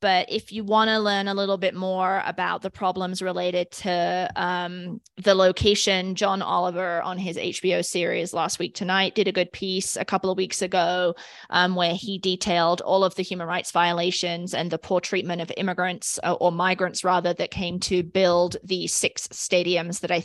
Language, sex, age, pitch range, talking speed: English, female, 20-39, 175-195 Hz, 190 wpm